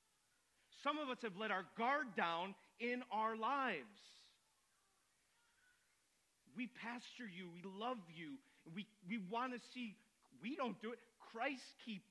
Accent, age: American, 40-59